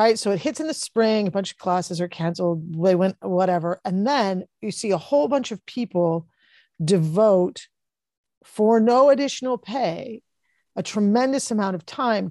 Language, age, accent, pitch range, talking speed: English, 40-59, American, 185-230 Hz, 170 wpm